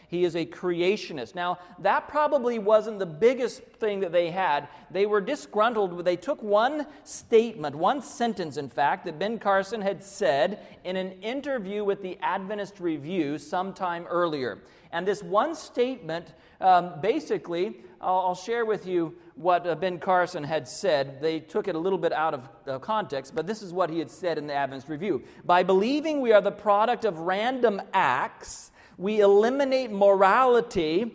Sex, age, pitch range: male, 40-59, 180-240 Hz